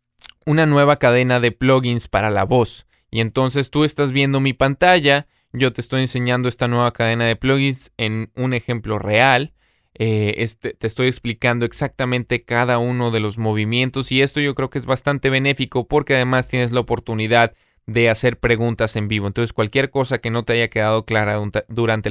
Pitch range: 115-135 Hz